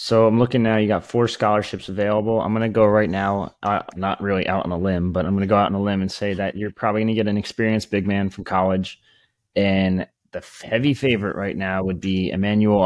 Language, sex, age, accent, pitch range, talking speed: English, male, 20-39, American, 95-115 Hz, 240 wpm